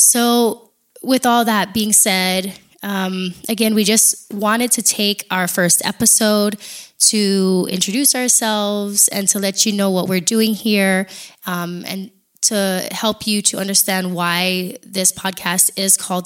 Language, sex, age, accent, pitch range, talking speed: English, female, 20-39, American, 185-220 Hz, 150 wpm